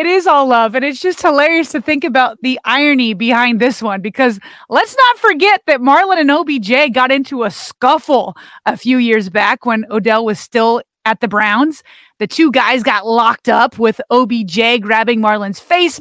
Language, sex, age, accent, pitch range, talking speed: English, female, 30-49, American, 225-300 Hz, 185 wpm